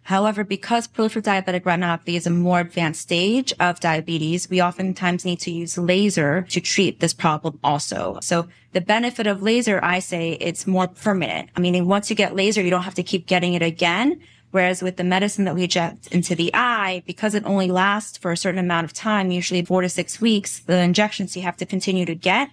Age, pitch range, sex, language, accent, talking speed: 20-39, 170-190 Hz, female, English, American, 215 wpm